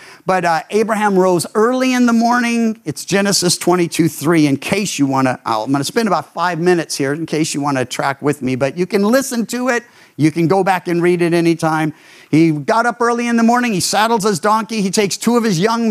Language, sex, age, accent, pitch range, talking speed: English, male, 50-69, American, 170-230 Hz, 240 wpm